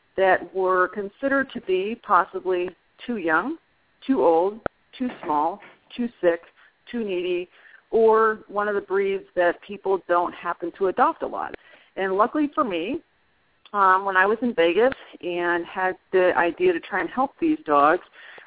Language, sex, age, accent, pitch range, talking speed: English, female, 40-59, American, 175-215 Hz, 160 wpm